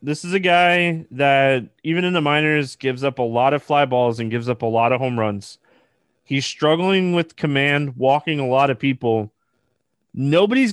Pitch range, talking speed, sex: 130-175 Hz, 190 wpm, male